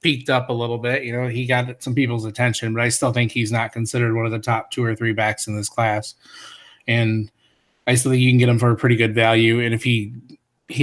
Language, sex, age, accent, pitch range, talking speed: English, male, 20-39, American, 115-125 Hz, 260 wpm